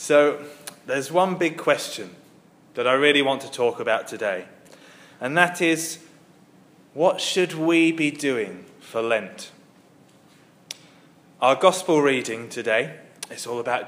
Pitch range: 125-155 Hz